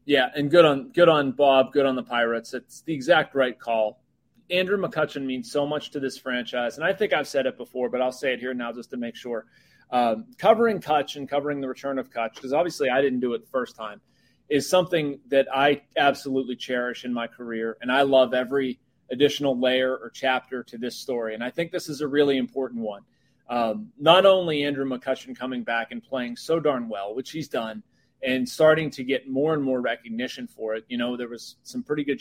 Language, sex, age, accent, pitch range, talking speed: English, male, 30-49, American, 120-145 Hz, 225 wpm